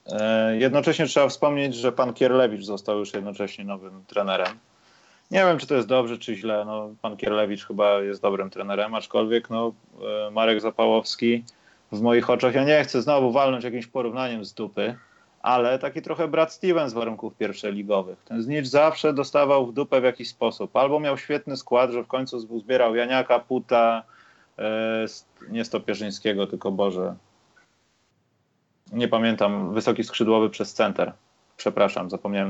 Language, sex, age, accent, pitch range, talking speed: Polish, male, 30-49, native, 115-150 Hz, 150 wpm